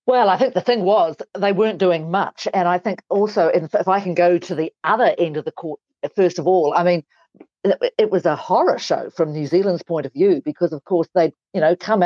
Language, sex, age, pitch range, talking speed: English, female, 50-69, 165-205 Hz, 240 wpm